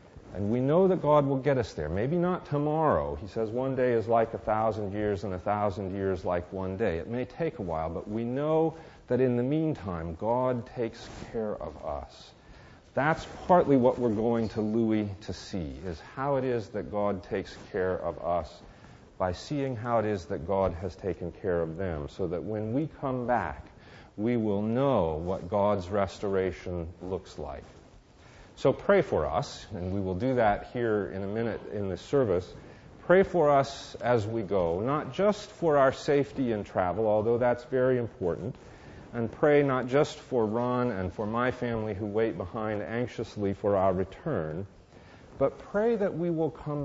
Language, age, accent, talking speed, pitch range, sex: English, 40-59, American, 185 wpm, 100-130 Hz, male